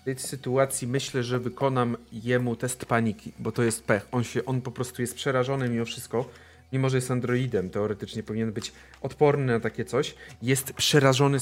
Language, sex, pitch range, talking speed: Polish, male, 110-160 Hz, 185 wpm